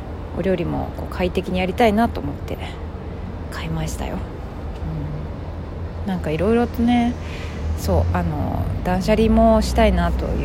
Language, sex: Japanese, female